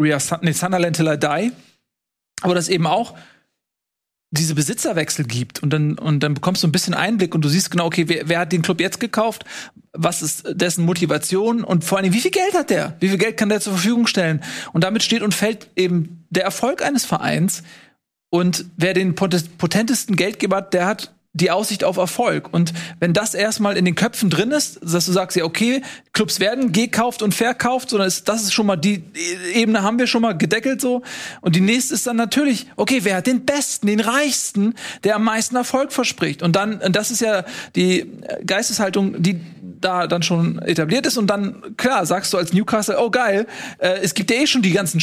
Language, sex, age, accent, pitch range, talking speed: German, male, 40-59, German, 175-225 Hz, 210 wpm